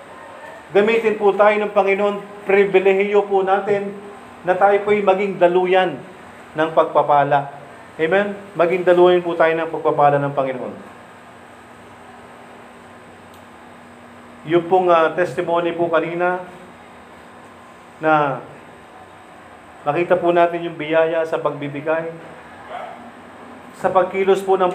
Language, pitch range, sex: Filipino, 155-195 Hz, male